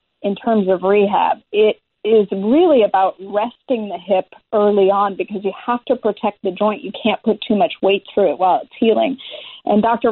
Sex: female